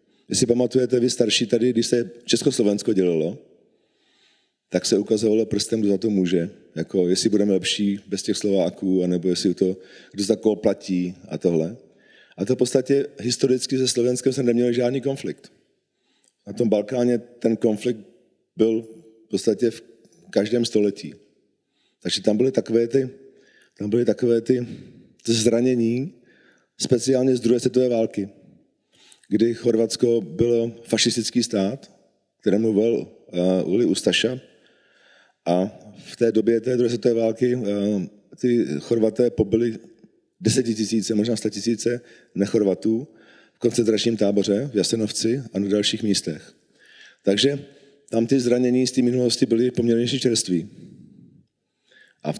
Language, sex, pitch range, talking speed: Czech, male, 105-125 Hz, 135 wpm